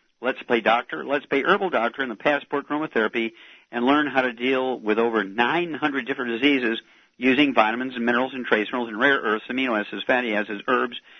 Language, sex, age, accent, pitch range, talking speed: English, male, 50-69, American, 120-145 Hz, 195 wpm